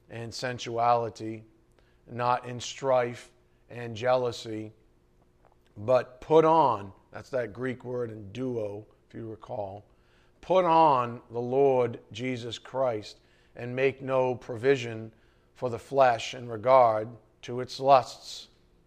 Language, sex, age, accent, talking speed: English, male, 40-59, American, 120 wpm